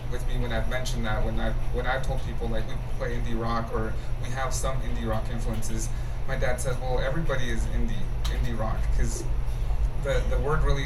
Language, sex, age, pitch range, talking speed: English, male, 20-39, 115-130 Hz, 210 wpm